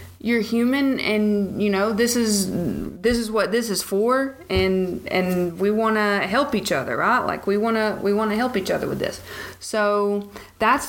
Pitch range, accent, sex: 185-225 Hz, American, female